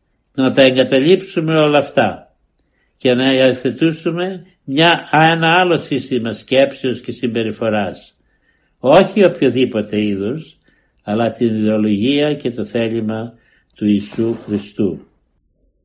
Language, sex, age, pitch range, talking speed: Greek, male, 60-79, 110-140 Hz, 100 wpm